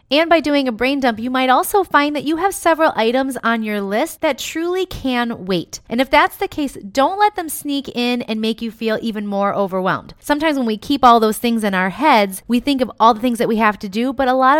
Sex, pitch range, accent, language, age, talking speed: female, 200-255 Hz, American, English, 20-39, 260 wpm